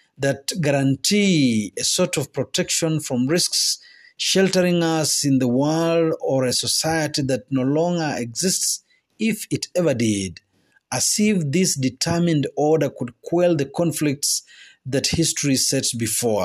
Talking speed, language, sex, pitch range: 135 wpm, Swahili, male, 130-170 Hz